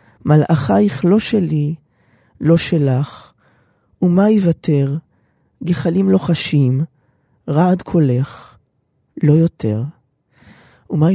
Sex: male